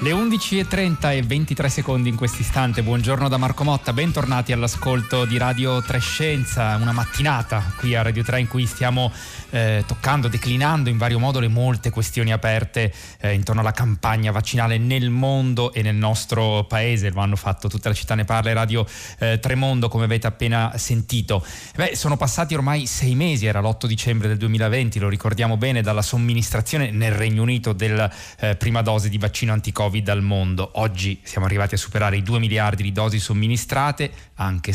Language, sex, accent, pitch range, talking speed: Italian, male, native, 105-125 Hz, 180 wpm